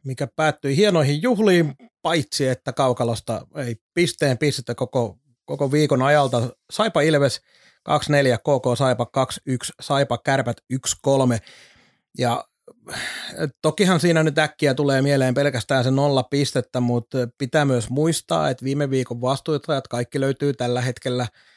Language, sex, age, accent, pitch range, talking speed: Finnish, male, 30-49, native, 125-150 Hz, 130 wpm